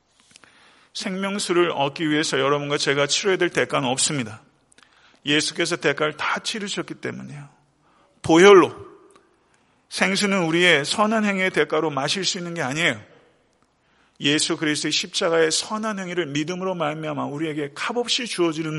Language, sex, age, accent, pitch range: Korean, male, 40-59, native, 145-190 Hz